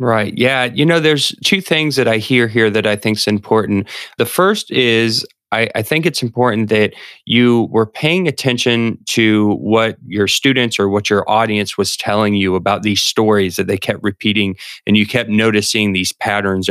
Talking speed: 190 wpm